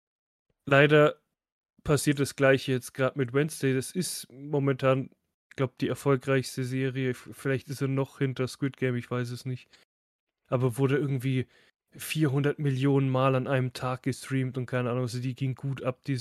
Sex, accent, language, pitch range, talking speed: male, German, German, 130-140 Hz, 170 wpm